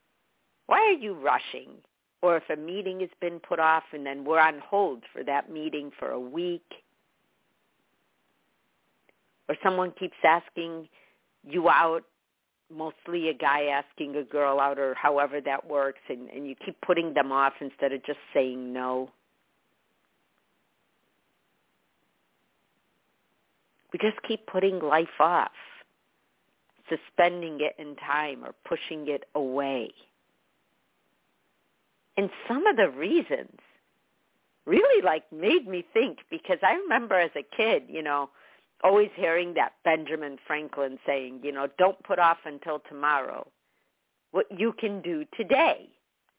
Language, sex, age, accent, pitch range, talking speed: English, female, 50-69, American, 145-195 Hz, 130 wpm